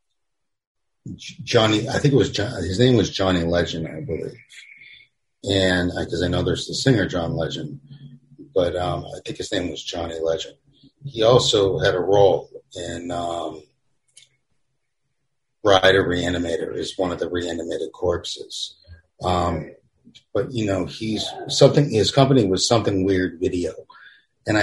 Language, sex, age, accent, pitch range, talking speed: English, male, 40-59, American, 90-135 Hz, 140 wpm